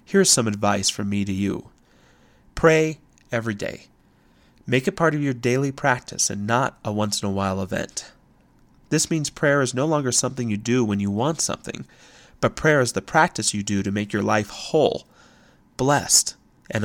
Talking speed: 180 wpm